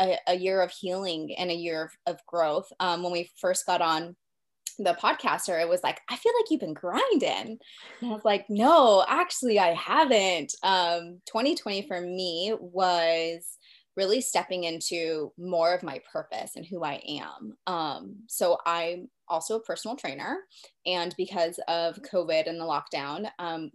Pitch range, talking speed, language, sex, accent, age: 165-195 Hz, 165 wpm, English, female, American, 20-39